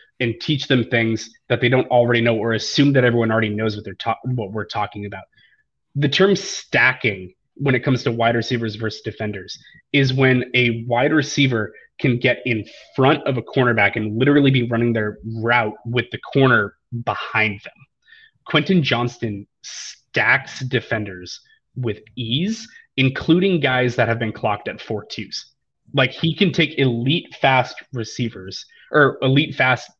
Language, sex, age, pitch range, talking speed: English, male, 20-39, 110-135 Hz, 165 wpm